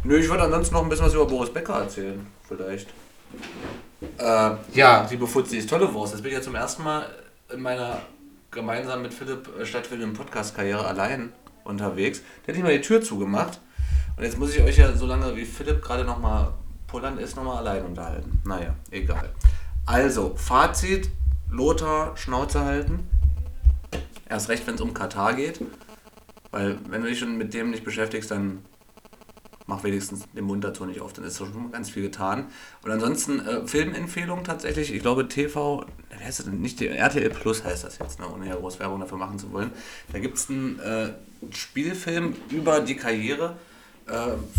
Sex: male